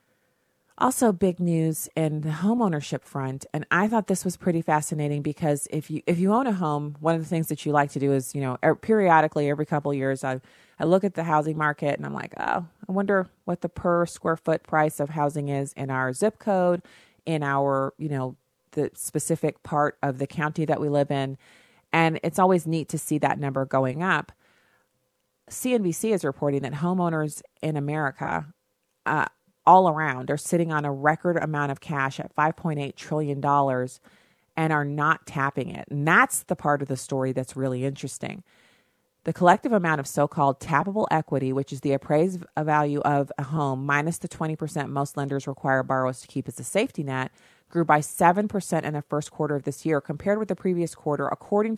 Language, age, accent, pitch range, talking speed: English, 30-49, American, 140-170 Hz, 195 wpm